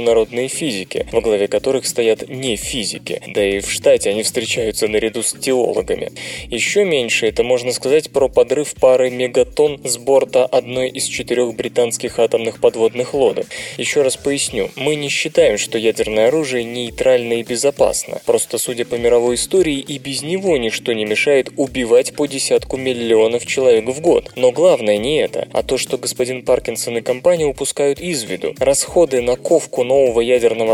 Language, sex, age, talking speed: Russian, male, 20-39, 165 wpm